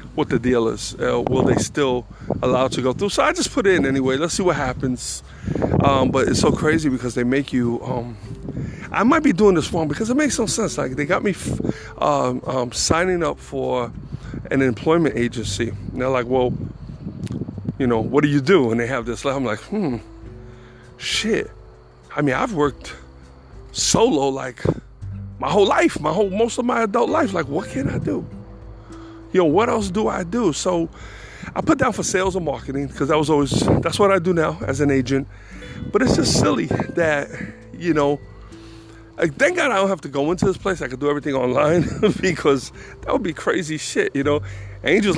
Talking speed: 205 wpm